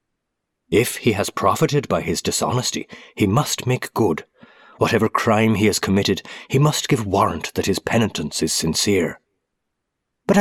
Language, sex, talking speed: English, male, 150 wpm